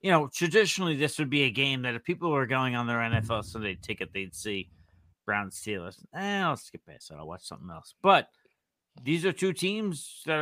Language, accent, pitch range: English, American, 120-155 Hz